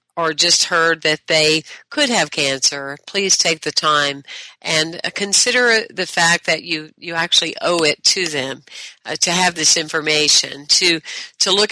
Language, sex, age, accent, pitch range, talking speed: English, female, 50-69, American, 150-185 Hz, 165 wpm